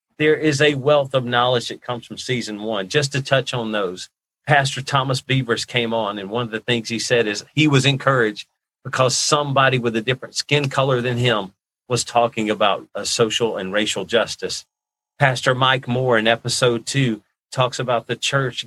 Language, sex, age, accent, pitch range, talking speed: English, male, 40-59, American, 110-125 Hz, 190 wpm